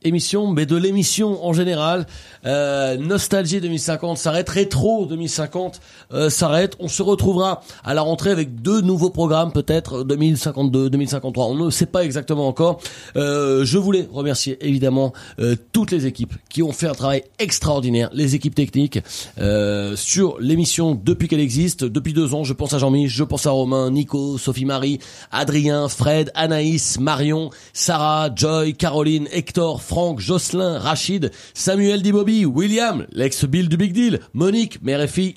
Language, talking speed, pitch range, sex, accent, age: French, 160 wpm, 140-180 Hz, male, French, 30-49